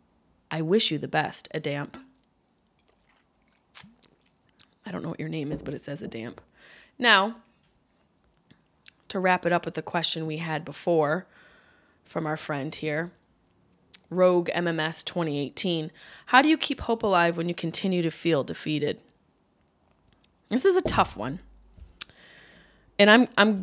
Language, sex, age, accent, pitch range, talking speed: English, female, 20-39, American, 160-225 Hz, 140 wpm